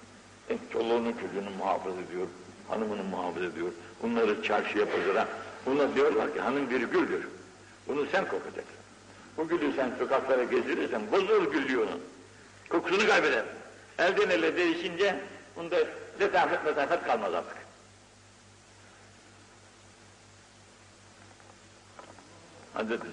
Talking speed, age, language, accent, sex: 100 wpm, 60-79, Turkish, native, male